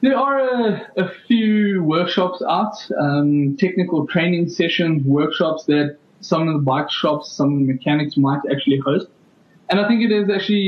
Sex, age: male, 20-39